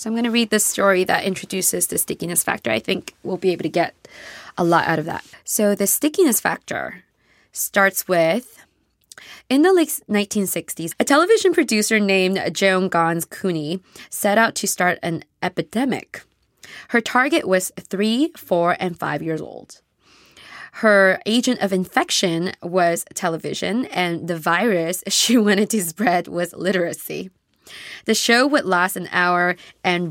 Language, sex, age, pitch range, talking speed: English, female, 20-39, 170-215 Hz, 155 wpm